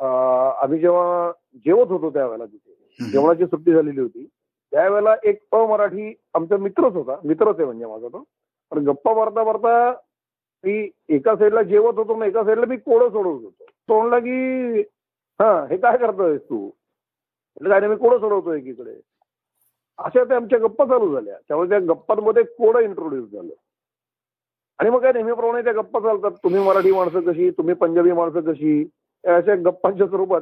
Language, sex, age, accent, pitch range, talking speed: Marathi, male, 50-69, native, 175-240 Hz, 155 wpm